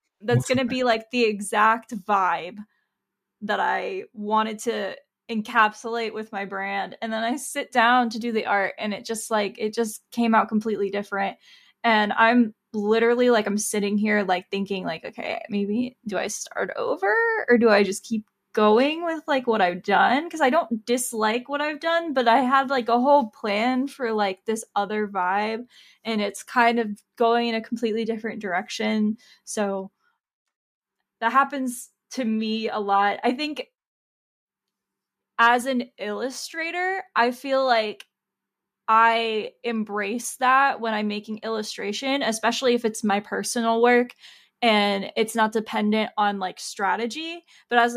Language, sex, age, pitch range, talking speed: English, female, 10-29, 210-245 Hz, 160 wpm